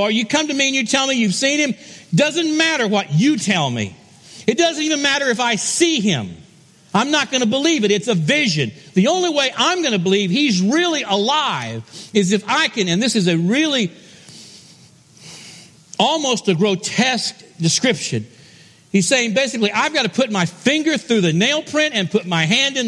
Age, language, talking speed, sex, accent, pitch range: 50-69, English, 200 wpm, male, American, 150-215 Hz